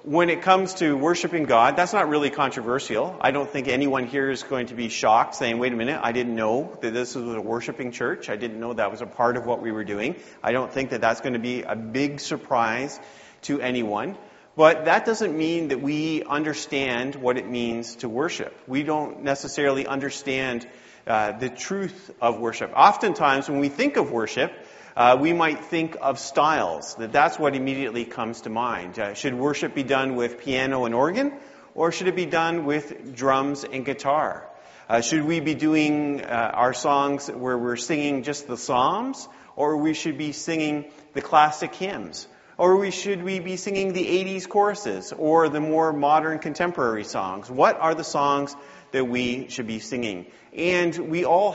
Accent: American